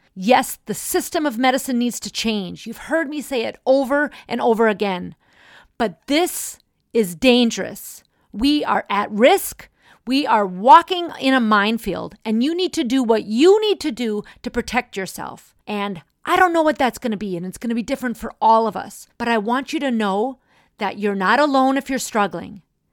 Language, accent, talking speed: English, American, 200 wpm